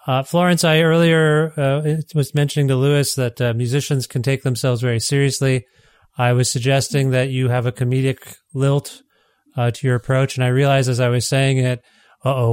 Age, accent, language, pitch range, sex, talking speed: 30-49, American, English, 130-155 Hz, male, 190 wpm